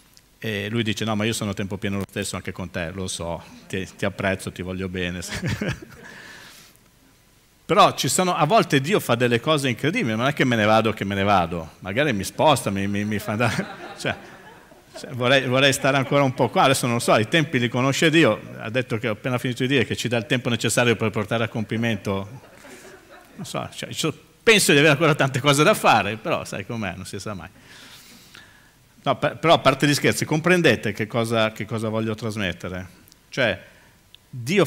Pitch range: 105-140 Hz